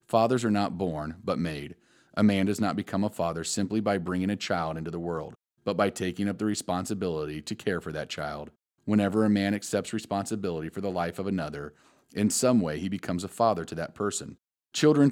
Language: English